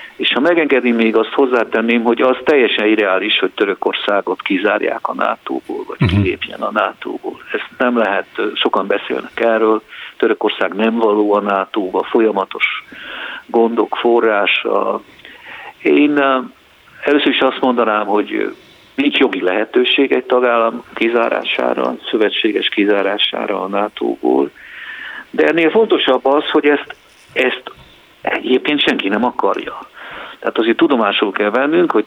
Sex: male